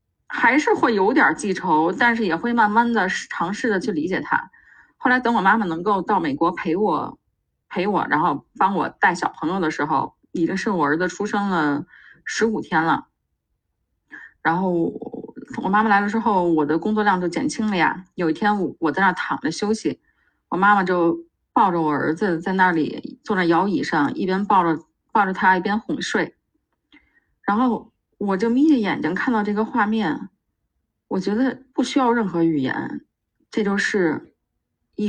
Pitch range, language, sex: 175-225 Hz, Chinese, female